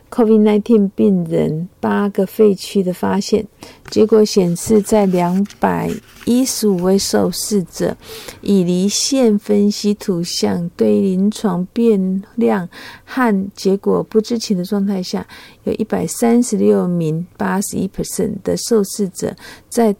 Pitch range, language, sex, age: 185-215 Hz, Chinese, female, 50-69